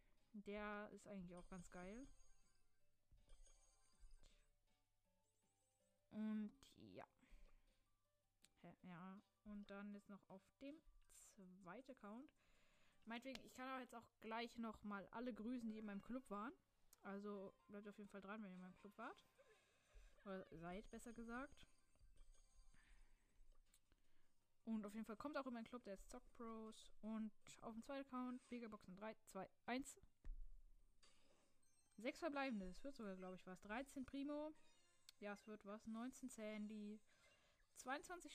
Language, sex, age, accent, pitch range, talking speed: German, female, 20-39, German, 175-240 Hz, 140 wpm